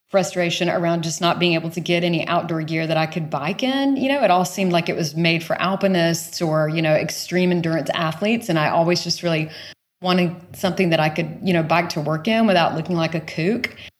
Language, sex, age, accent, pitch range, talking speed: English, female, 30-49, American, 160-200 Hz, 230 wpm